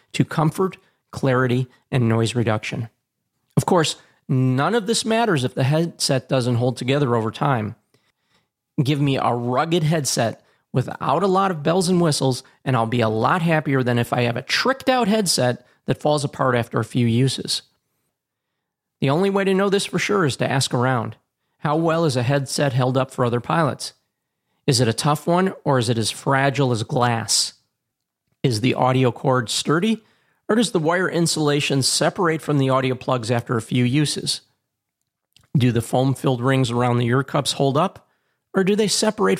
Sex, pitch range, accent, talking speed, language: male, 125-155 Hz, American, 185 wpm, English